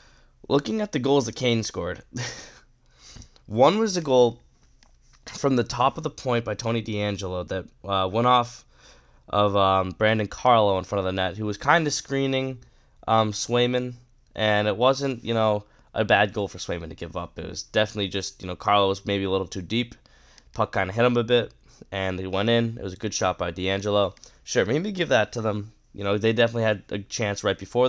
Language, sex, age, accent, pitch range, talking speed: English, male, 10-29, American, 100-125 Hz, 215 wpm